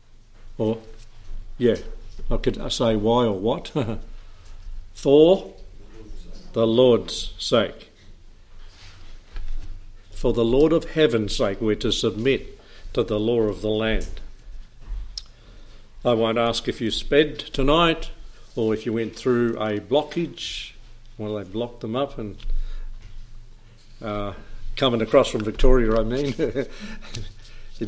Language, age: English, 60-79